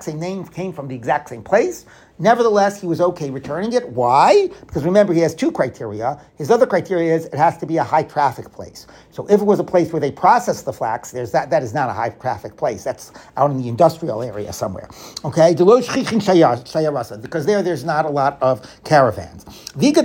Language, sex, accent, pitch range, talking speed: English, male, American, 145-200 Hz, 205 wpm